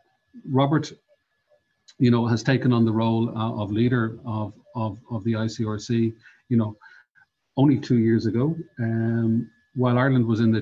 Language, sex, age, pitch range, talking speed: English, male, 40-59, 110-130 Hz, 160 wpm